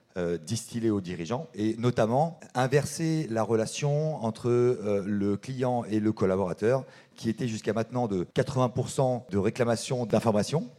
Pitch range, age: 100-130 Hz, 40-59